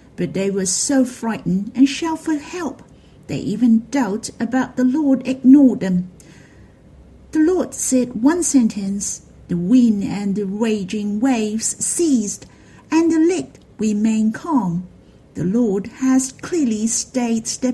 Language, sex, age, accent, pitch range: Chinese, female, 50-69, British, 210-270 Hz